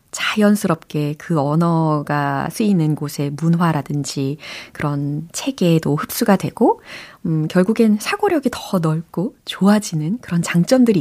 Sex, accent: female, native